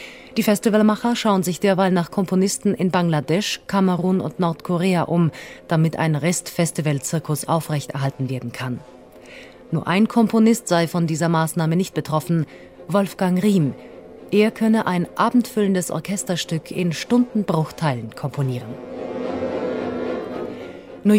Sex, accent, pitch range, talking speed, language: female, German, 160-200 Hz, 110 wpm, German